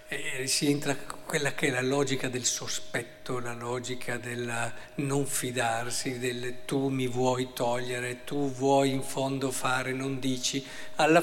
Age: 50-69